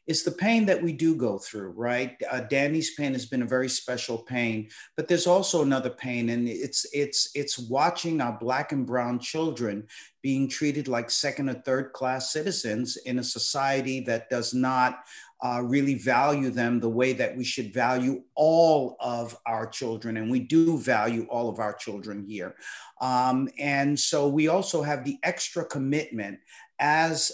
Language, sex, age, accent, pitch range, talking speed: English, male, 50-69, American, 125-155 Hz, 175 wpm